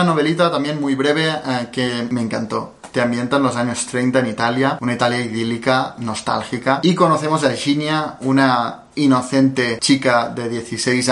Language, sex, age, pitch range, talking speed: Spanish, male, 20-39, 125-150 Hz, 150 wpm